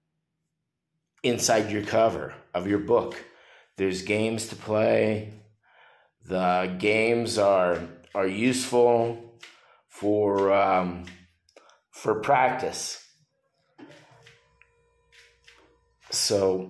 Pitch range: 85-110 Hz